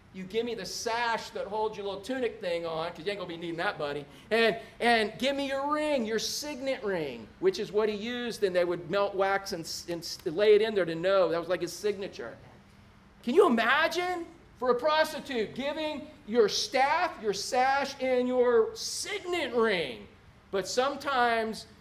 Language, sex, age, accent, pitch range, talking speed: English, male, 40-59, American, 200-290 Hz, 195 wpm